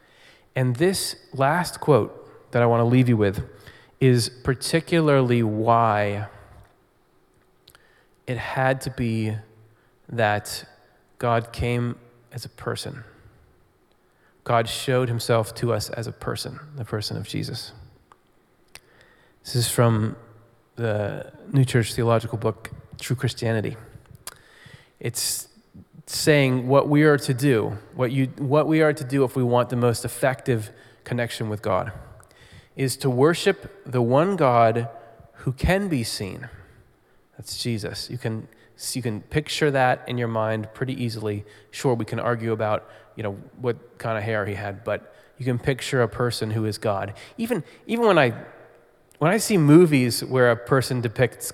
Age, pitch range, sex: 30-49, 110-135 Hz, male